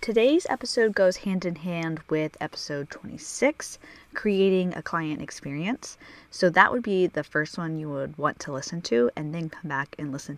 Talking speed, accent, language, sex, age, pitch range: 185 wpm, American, English, female, 10-29, 155-205 Hz